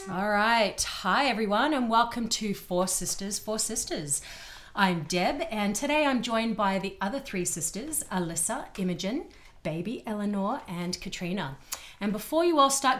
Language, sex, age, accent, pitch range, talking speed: English, female, 30-49, Australian, 180-240 Hz, 150 wpm